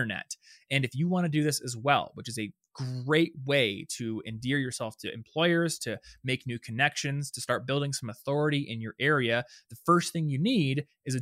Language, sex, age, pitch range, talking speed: English, male, 20-39, 115-155 Hz, 200 wpm